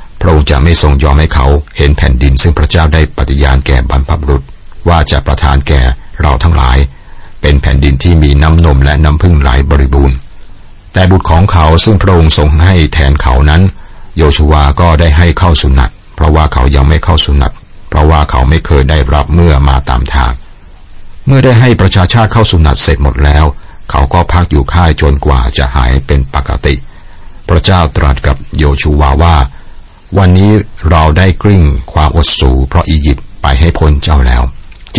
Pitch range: 70-85 Hz